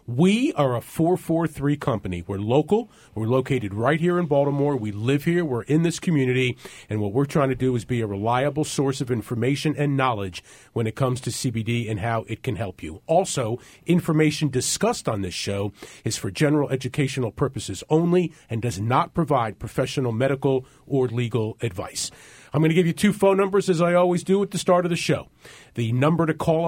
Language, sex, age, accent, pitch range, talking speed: English, male, 40-59, American, 120-160 Hz, 200 wpm